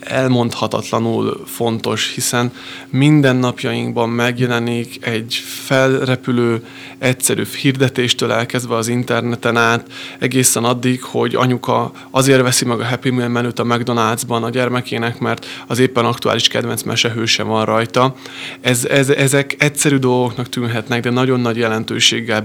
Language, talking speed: Hungarian, 130 wpm